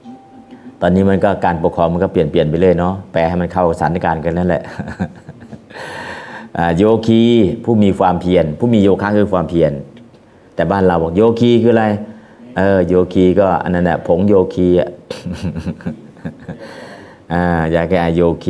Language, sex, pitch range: Thai, male, 90-110 Hz